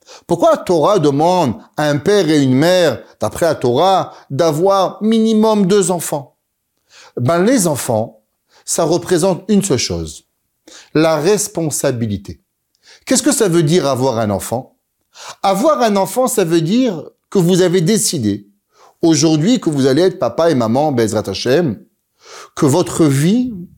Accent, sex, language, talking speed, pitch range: French, male, French, 140 wpm, 140-210 Hz